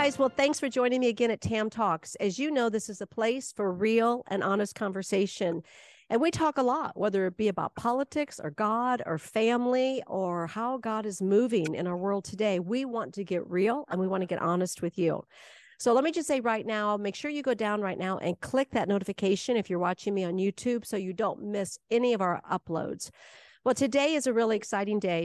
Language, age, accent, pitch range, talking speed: English, 50-69, American, 185-240 Hz, 230 wpm